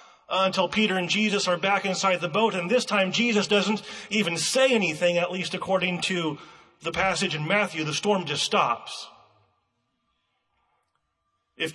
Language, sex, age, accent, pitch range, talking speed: English, male, 30-49, American, 175-215 Hz, 155 wpm